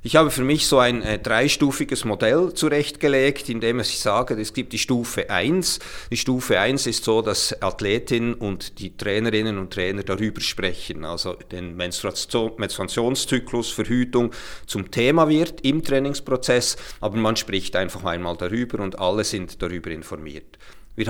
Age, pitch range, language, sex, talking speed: 40-59, 105-130 Hz, German, male, 155 wpm